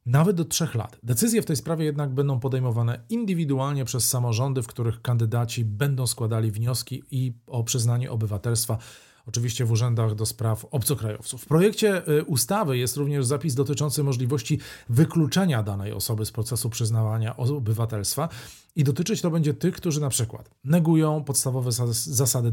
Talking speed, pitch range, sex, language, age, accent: 145 wpm, 115-145 Hz, male, Polish, 40-59, native